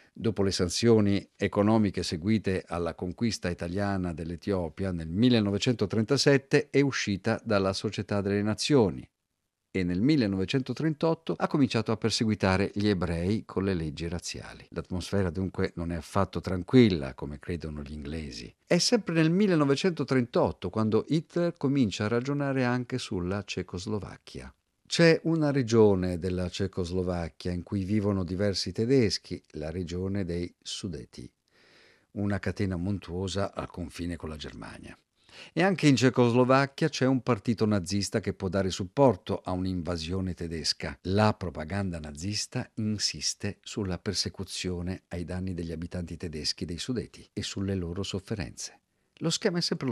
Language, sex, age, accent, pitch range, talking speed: Italian, male, 50-69, native, 90-115 Hz, 130 wpm